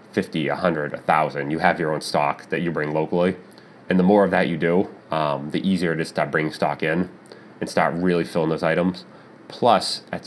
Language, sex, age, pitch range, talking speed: English, male, 30-49, 80-95 Hz, 215 wpm